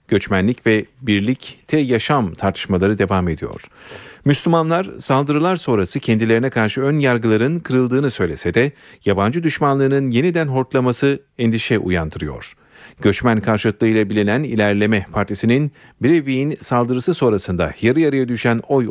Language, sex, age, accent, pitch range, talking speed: Turkish, male, 40-59, native, 105-140 Hz, 115 wpm